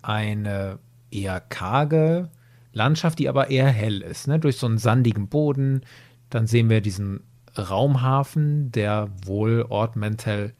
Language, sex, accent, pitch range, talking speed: German, male, German, 105-125 Hz, 125 wpm